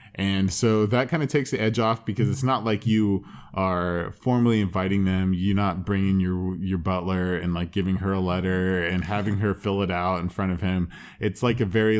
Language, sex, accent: English, male, American